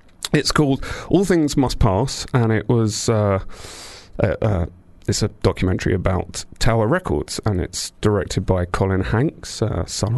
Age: 30-49